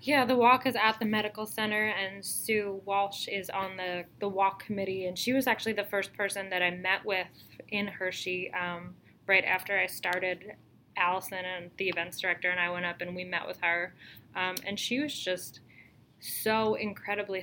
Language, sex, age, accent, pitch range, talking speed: English, female, 10-29, American, 175-200 Hz, 195 wpm